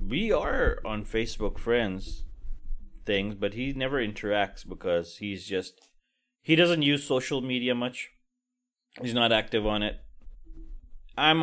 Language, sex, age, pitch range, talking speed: English, male, 20-39, 105-145 Hz, 130 wpm